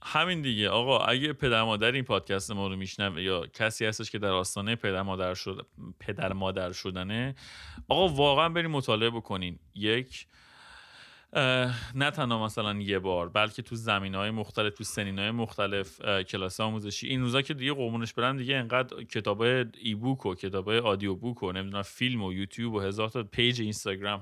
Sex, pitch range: male, 100-125 Hz